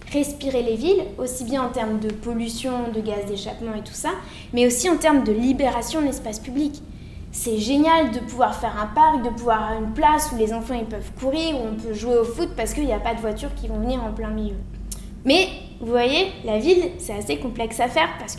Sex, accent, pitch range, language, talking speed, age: female, French, 240-305 Hz, French, 235 wpm, 20-39